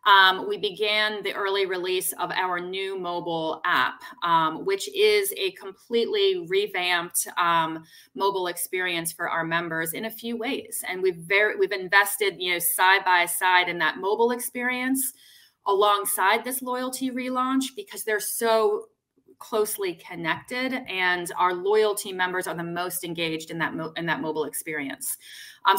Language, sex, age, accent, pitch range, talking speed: English, female, 30-49, American, 170-225 Hz, 155 wpm